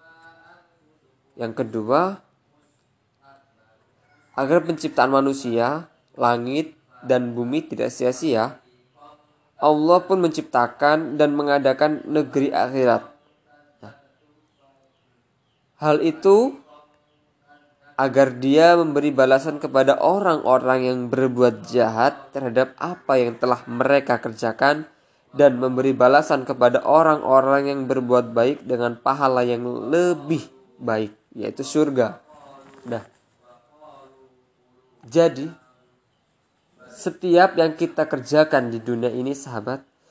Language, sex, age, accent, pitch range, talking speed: Indonesian, male, 20-39, native, 125-155 Hz, 90 wpm